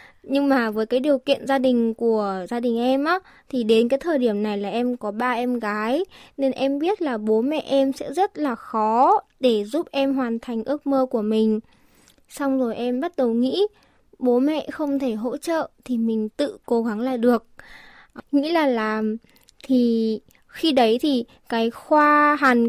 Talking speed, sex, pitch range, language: 195 wpm, female, 235-280 Hz, Vietnamese